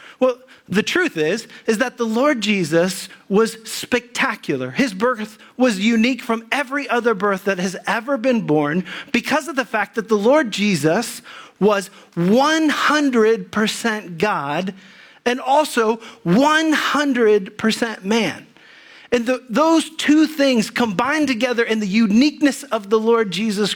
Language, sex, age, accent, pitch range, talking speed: English, male, 40-59, American, 210-265 Hz, 130 wpm